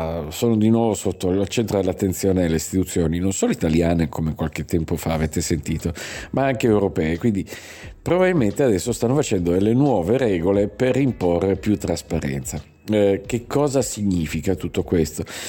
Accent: native